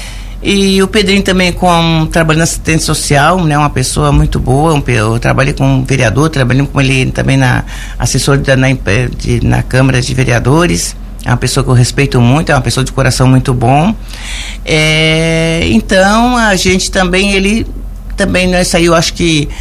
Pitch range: 130-170 Hz